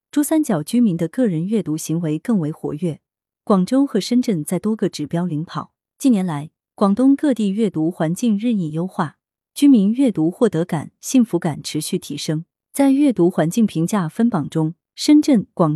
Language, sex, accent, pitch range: Chinese, female, native, 165-235 Hz